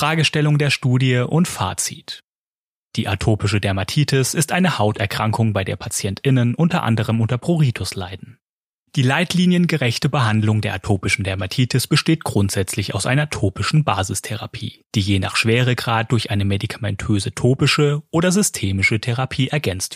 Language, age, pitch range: German, 30-49, 105-150 Hz